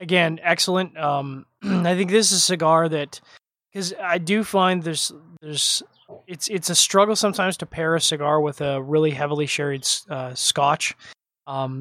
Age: 20-39